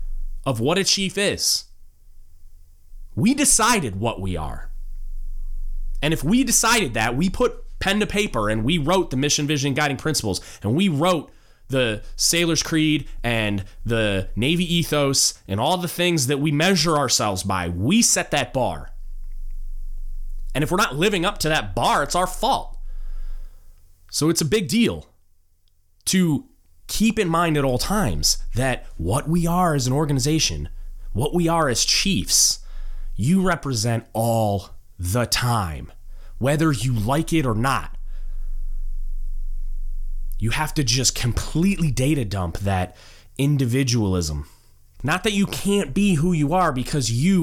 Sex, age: male, 30-49